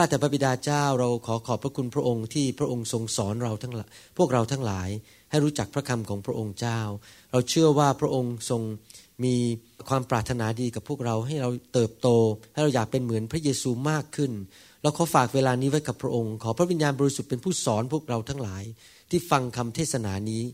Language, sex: Thai, male